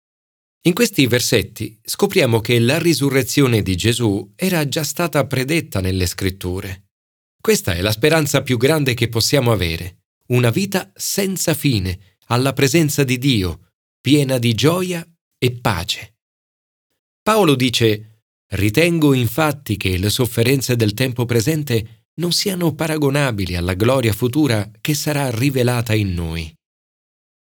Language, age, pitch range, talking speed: Italian, 40-59, 100-145 Hz, 125 wpm